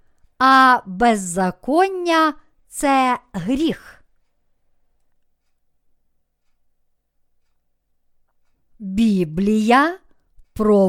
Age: 50-69